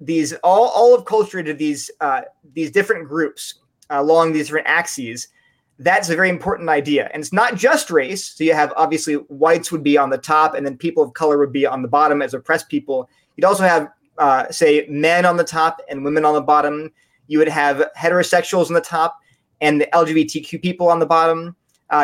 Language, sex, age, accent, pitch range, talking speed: English, male, 30-49, American, 155-195 Hz, 210 wpm